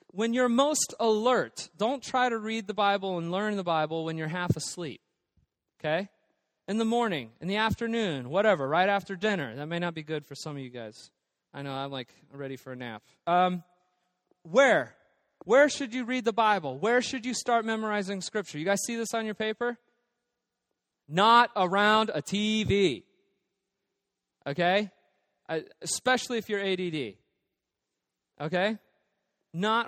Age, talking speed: 30-49, 160 wpm